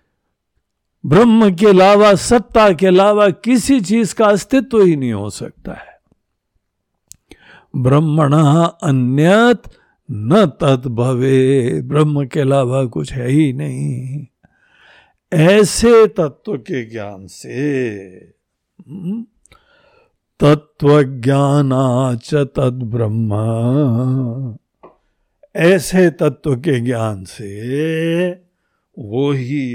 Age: 60-79